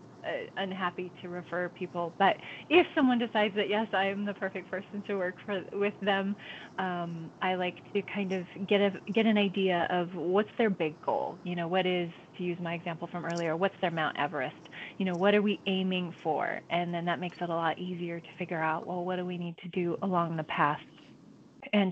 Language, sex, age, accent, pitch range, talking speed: English, female, 20-39, American, 170-195 Hz, 215 wpm